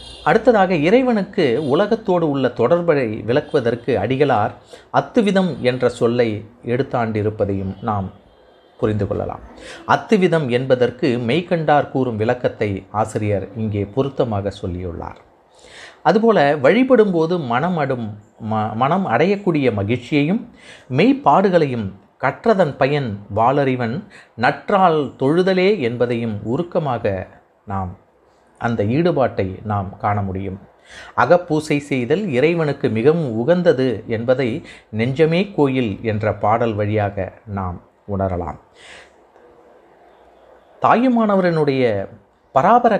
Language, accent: Tamil, native